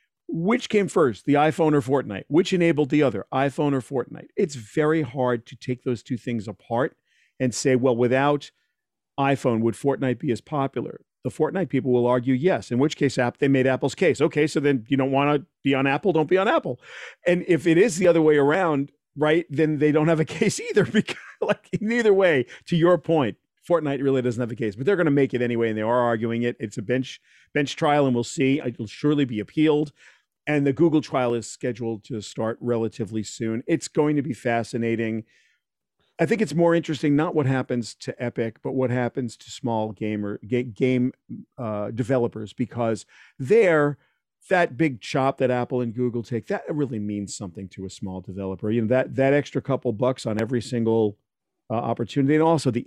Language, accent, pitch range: English, American, 120-150 Hz